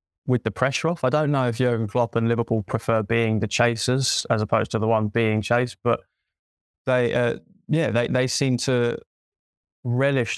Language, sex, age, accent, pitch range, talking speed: English, male, 20-39, British, 110-120 Hz, 185 wpm